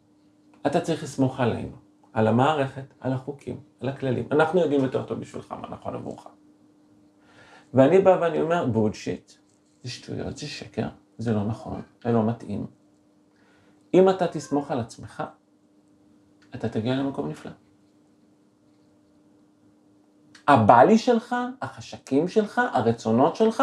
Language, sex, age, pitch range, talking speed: Hebrew, male, 40-59, 120-180 Hz, 120 wpm